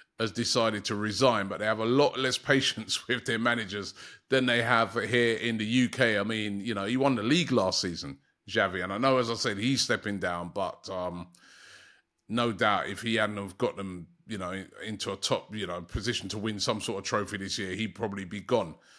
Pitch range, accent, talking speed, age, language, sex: 110-135 Hz, British, 225 wpm, 30-49, English, male